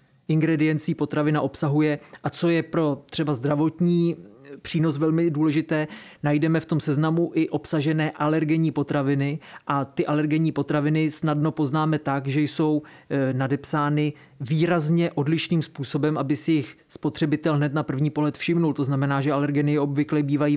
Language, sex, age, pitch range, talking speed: Czech, male, 30-49, 145-160 Hz, 140 wpm